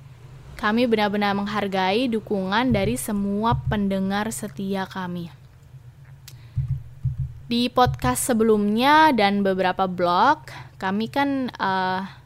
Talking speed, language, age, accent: 90 wpm, English, 10-29, Indonesian